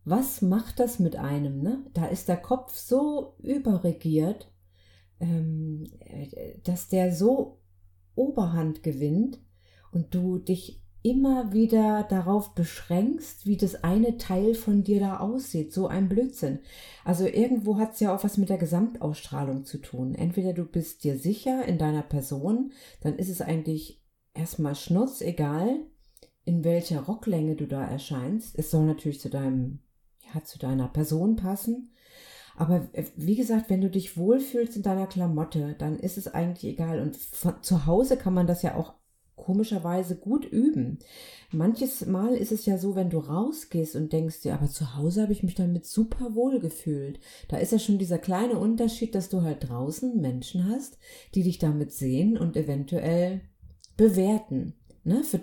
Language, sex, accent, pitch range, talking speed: German, female, German, 155-215 Hz, 155 wpm